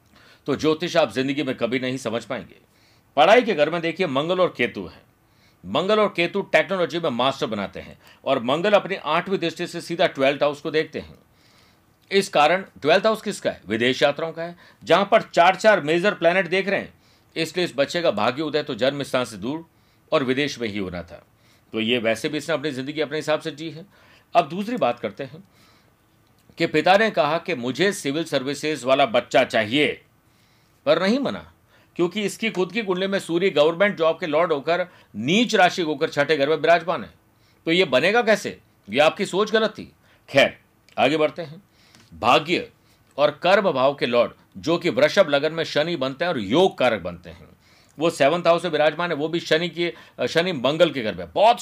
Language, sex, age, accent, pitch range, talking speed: Hindi, male, 50-69, native, 125-175 Hz, 200 wpm